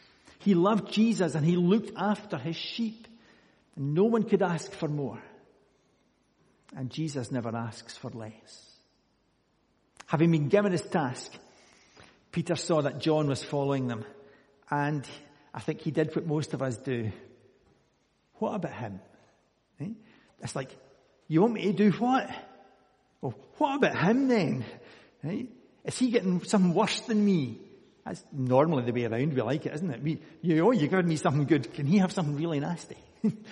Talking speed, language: 160 wpm, English